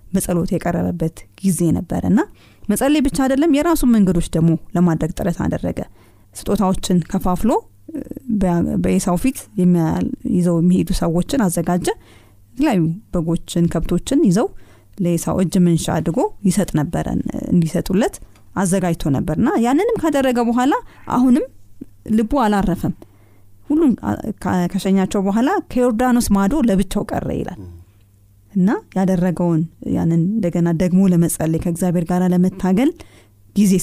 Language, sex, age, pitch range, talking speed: Amharic, female, 20-39, 160-215 Hz, 100 wpm